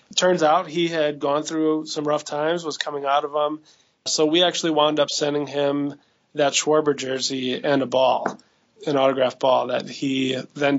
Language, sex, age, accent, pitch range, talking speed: English, male, 20-39, American, 140-160 Hz, 185 wpm